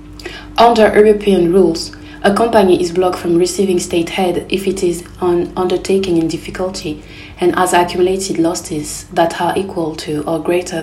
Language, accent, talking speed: English, French, 155 wpm